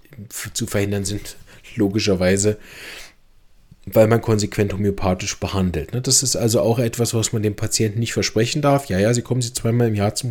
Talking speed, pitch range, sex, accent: 170 wpm, 100-120 Hz, male, German